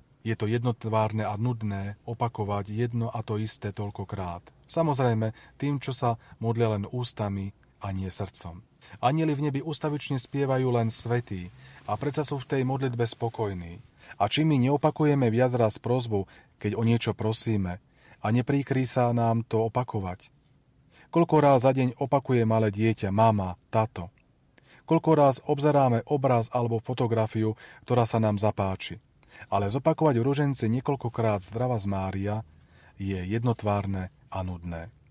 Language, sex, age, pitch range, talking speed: Slovak, male, 40-59, 105-130 Hz, 140 wpm